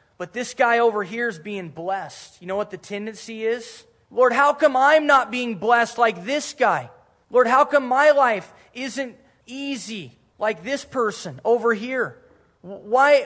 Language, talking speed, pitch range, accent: English, 165 wpm, 160-235 Hz, American